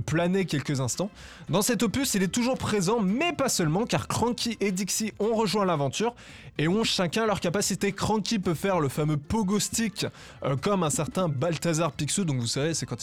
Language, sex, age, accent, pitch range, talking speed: French, male, 20-39, French, 140-195 Hz, 200 wpm